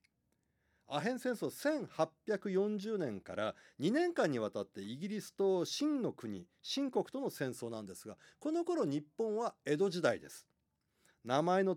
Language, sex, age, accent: Japanese, male, 40-59, native